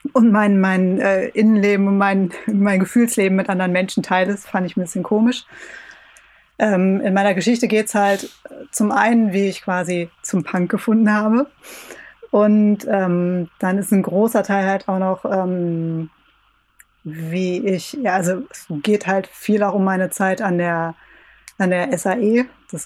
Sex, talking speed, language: female, 170 wpm, German